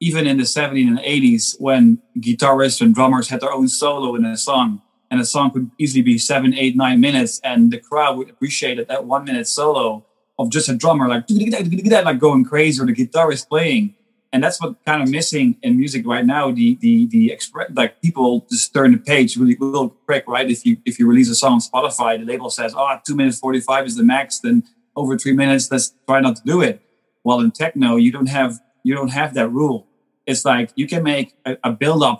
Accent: Dutch